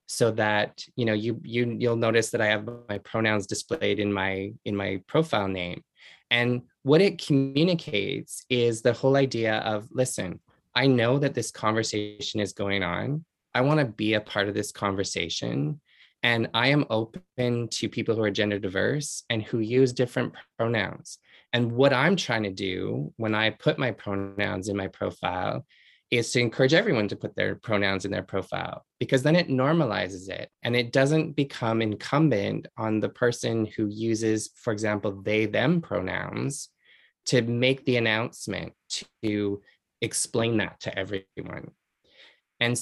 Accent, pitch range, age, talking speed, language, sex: American, 105-130 Hz, 20-39, 165 wpm, English, male